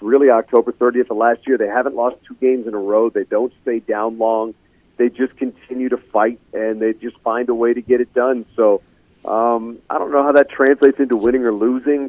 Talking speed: 230 wpm